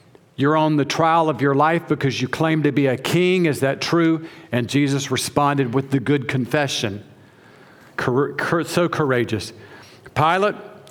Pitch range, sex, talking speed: 120-155 Hz, male, 150 wpm